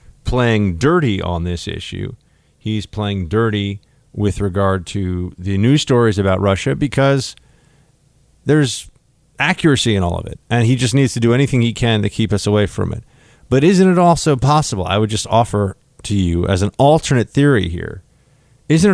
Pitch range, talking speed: 100-135 Hz, 175 wpm